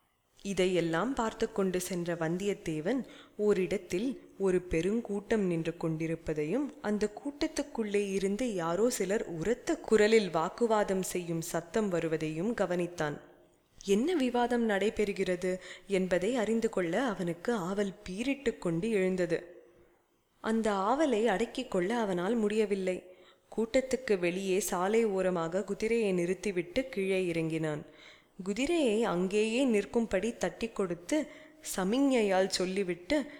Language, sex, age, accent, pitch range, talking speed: Tamil, female, 20-39, native, 175-230 Hz, 95 wpm